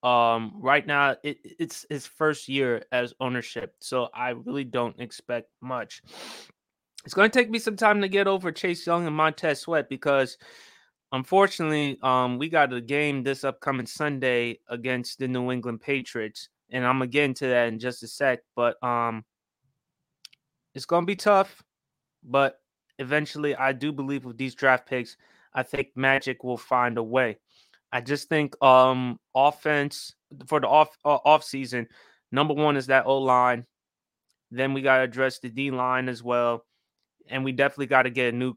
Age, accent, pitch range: 20-39, American, 125-150 Hz